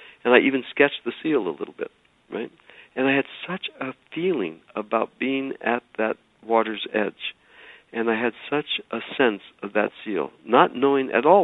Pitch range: 100-135 Hz